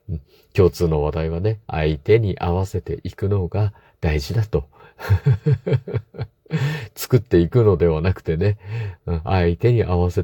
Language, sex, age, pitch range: Japanese, male, 50-69, 85-105 Hz